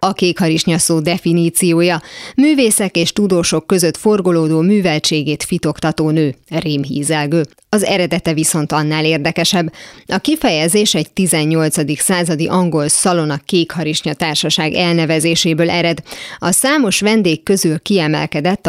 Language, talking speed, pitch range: Hungarian, 110 wpm, 160-185 Hz